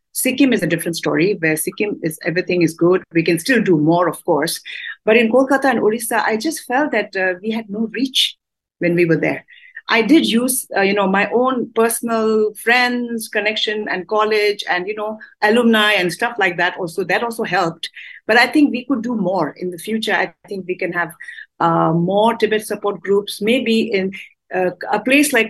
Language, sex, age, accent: English, female, 50-69, Indian